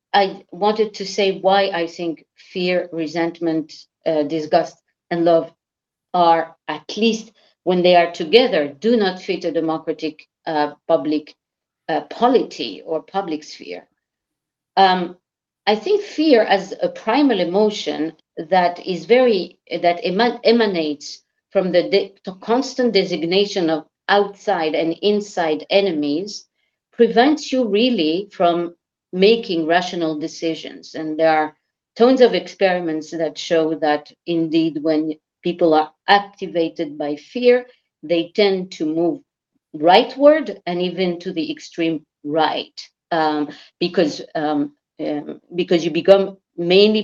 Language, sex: English, female